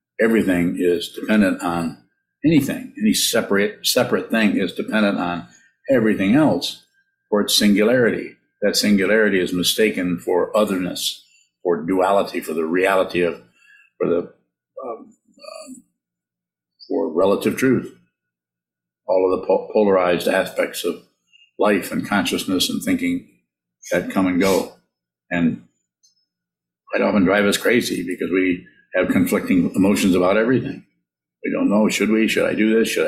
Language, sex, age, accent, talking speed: English, male, 50-69, American, 135 wpm